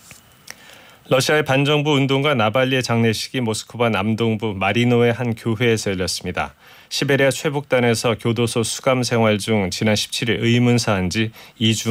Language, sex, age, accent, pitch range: Korean, male, 30-49, native, 105-130 Hz